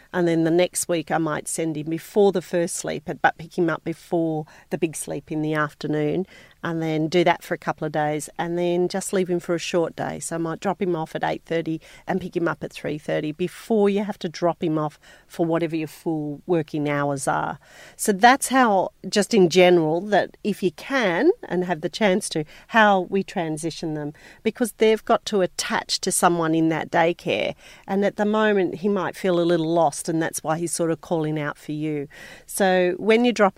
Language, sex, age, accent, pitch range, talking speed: English, female, 40-59, Australian, 160-195 Hz, 220 wpm